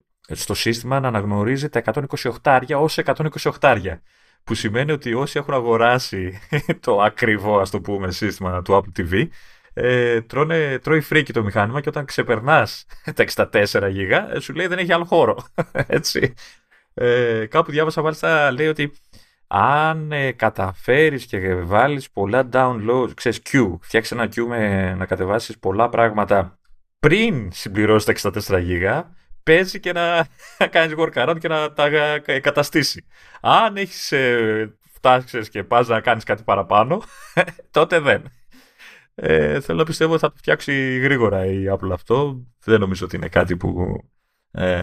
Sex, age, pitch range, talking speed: male, 30-49, 95-145 Hz, 145 wpm